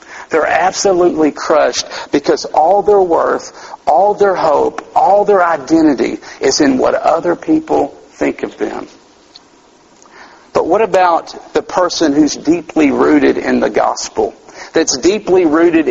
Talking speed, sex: 130 wpm, male